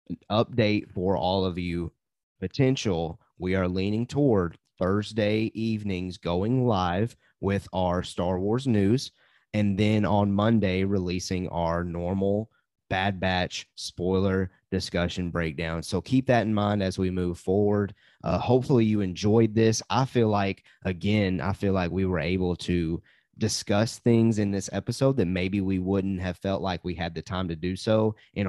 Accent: American